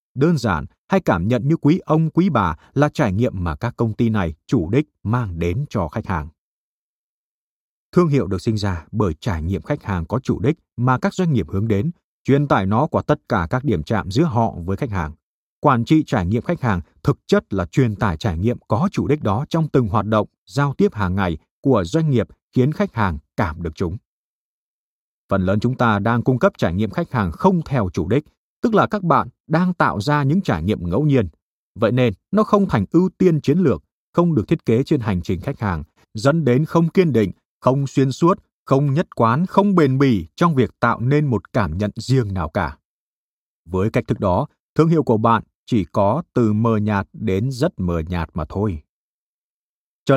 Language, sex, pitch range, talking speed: Vietnamese, male, 100-150 Hz, 215 wpm